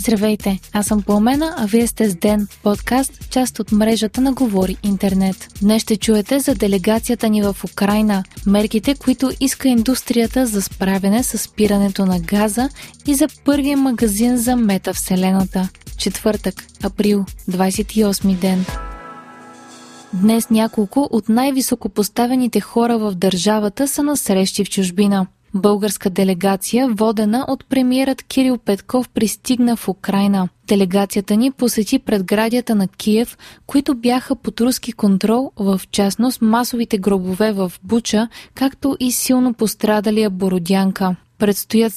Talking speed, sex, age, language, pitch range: 125 wpm, female, 20-39, Bulgarian, 195-245 Hz